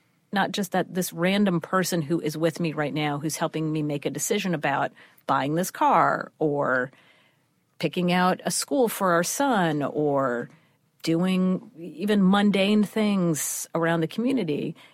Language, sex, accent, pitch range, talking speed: English, female, American, 150-180 Hz, 155 wpm